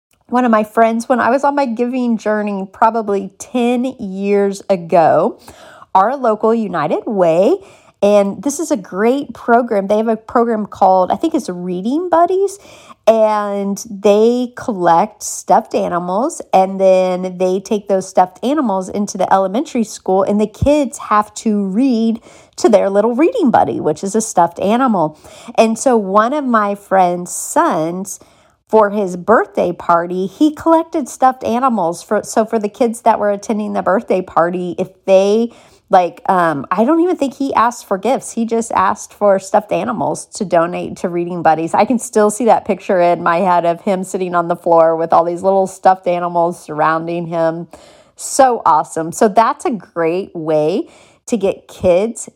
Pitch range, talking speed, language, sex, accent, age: 180-230 Hz, 170 wpm, English, female, American, 40-59